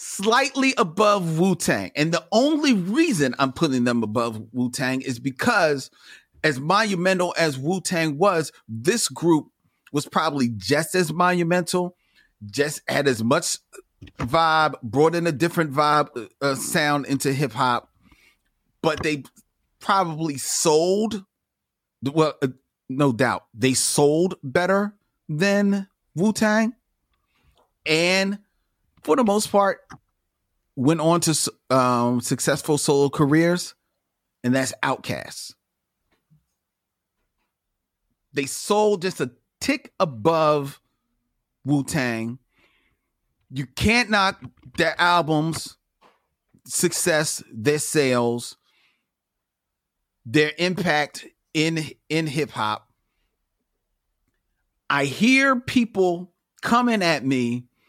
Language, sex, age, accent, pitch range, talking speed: English, male, 40-59, American, 130-185 Hz, 95 wpm